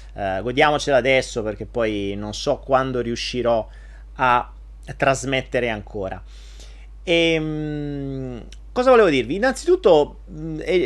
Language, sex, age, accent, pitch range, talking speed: Italian, male, 30-49, native, 115-150 Hz, 90 wpm